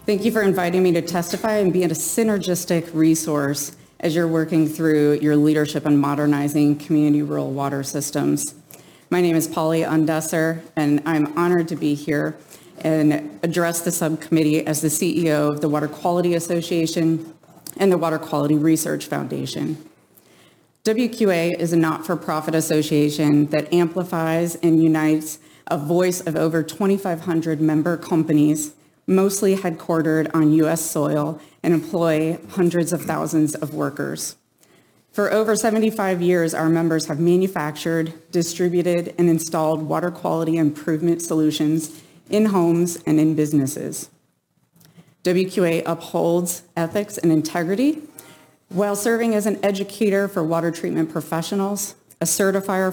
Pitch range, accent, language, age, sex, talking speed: 155-175 Hz, American, English, 30-49, female, 135 wpm